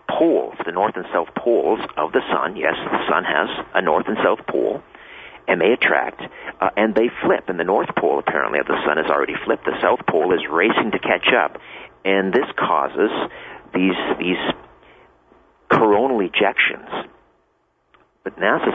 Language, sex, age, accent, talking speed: English, male, 50-69, American, 170 wpm